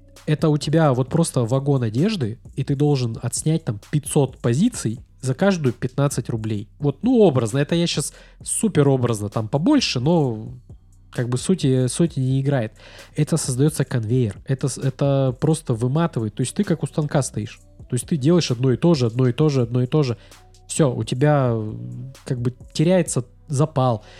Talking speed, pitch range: 175 wpm, 120-155 Hz